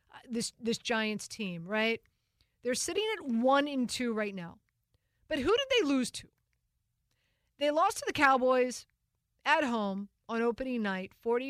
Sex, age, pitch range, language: female, 30-49, 215-295 Hz, English